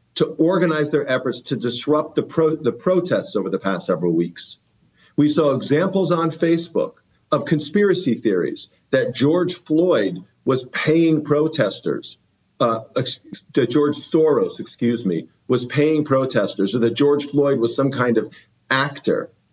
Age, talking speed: 50-69, 150 wpm